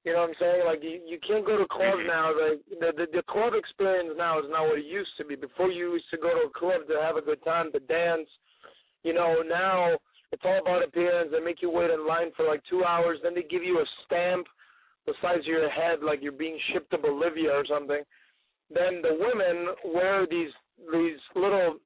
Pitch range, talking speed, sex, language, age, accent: 160-185 Hz, 235 wpm, male, English, 30-49, American